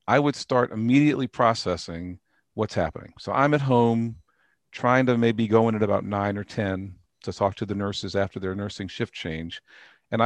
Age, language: 50-69, English